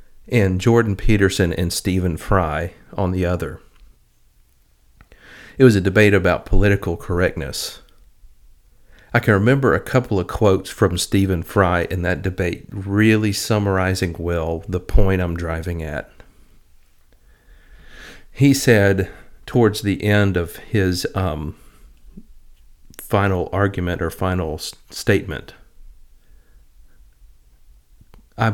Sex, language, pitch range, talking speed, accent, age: male, English, 85-105 Hz, 105 wpm, American, 50-69